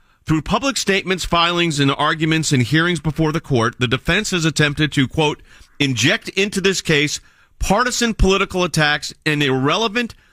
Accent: American